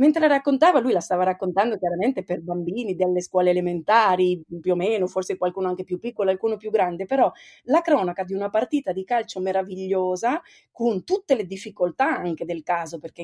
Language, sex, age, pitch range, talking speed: Italian, female, 30-49, 180-250 Hz, 185 wpm